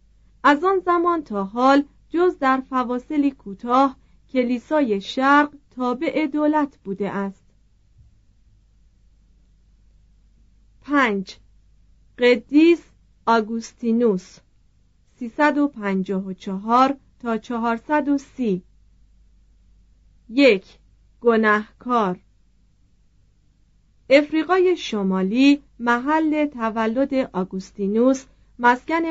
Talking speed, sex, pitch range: 60 wpm, female, 195-280 Hz